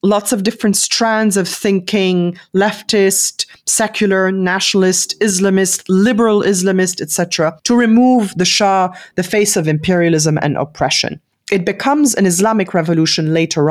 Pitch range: 170-225 Hz